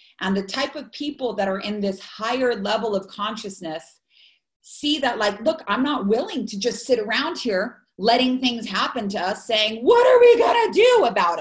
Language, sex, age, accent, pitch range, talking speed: English, female, 30-49, American, 210-290 Hz, 200 wpm